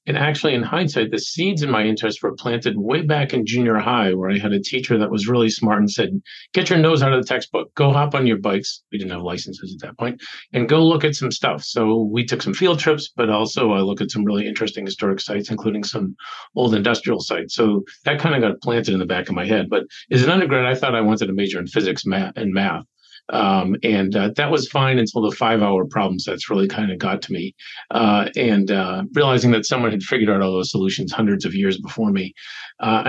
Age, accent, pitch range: 50-69, American, 100-130 Hz